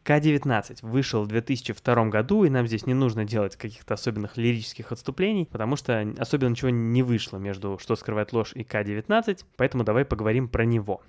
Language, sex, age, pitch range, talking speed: Russian, male, 20-39, 110-130 Hz, 175 wpm